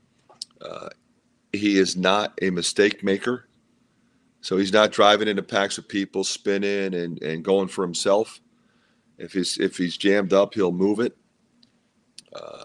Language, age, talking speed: English, 40-59, 140 wpm